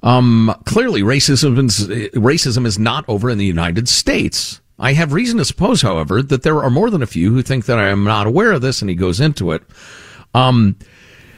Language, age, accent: English, 50-69, American